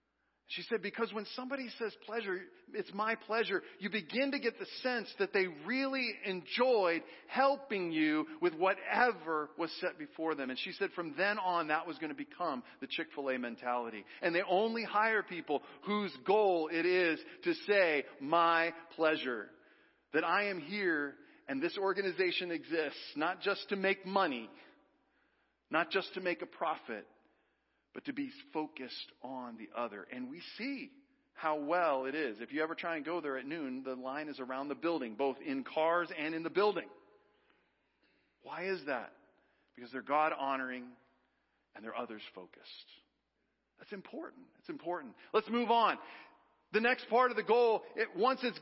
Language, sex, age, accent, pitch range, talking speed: English, male, 40-59, American, 165-240 Hz, 170 wpm